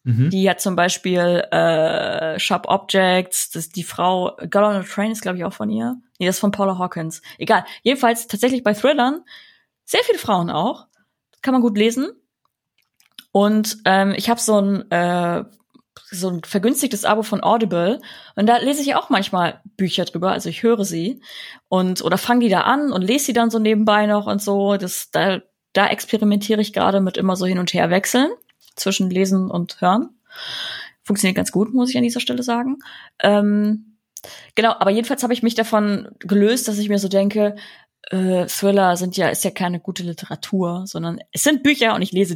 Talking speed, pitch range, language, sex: 190 wpm, 175-225 Hz, German, female